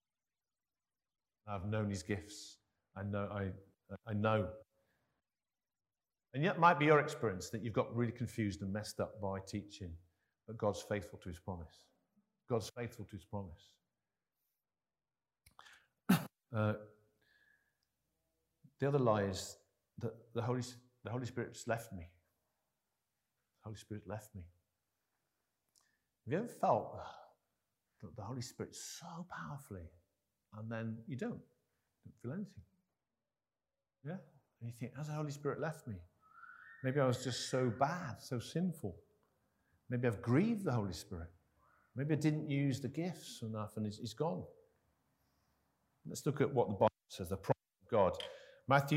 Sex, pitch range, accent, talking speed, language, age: male, 105-140 Hz, British, 150 wpm, English, 50-69